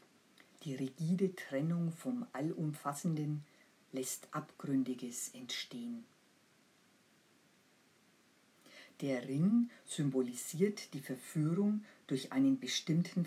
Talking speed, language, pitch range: 70 wpm, German, 135-190 Hz